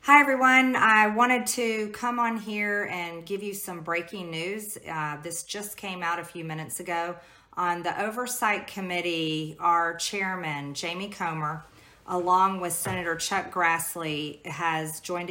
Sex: female